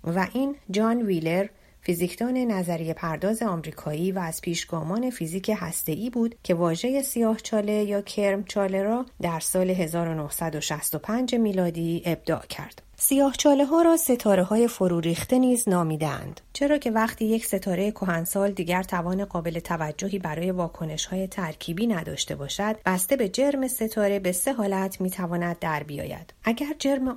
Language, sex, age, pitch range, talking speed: Persian, female, 30-49, 170-225 Hz, 145 wpm